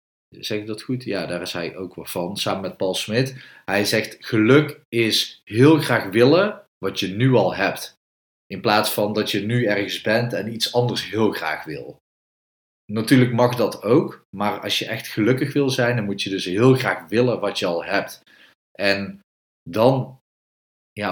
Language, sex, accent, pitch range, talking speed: Dutch, male, Dutch, 90-120 Hz, 190 wpm